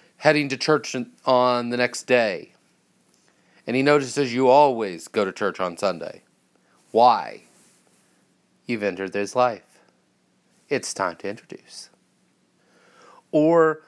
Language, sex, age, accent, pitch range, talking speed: English, male, 30-49, American, 115-160 Hz, 115 wpm